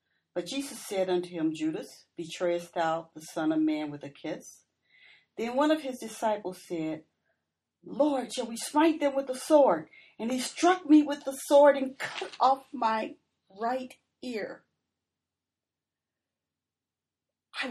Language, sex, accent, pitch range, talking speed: English, female, American, 160-235 Hz, 145 wpm